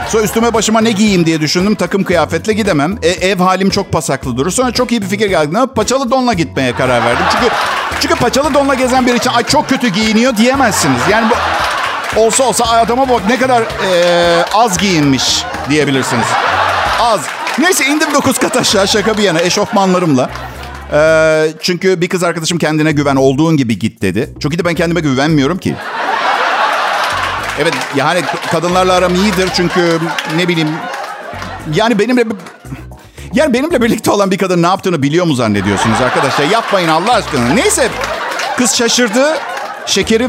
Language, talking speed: Turkish, 160 wpm